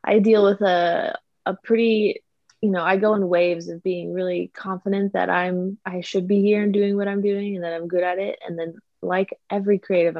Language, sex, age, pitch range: English, female, 20-39, 170-200 Hz